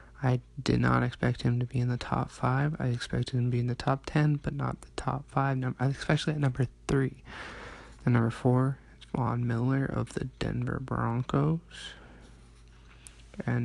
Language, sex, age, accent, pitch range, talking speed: English, male, 20-39, American, 110-135 Hz, 175 wpm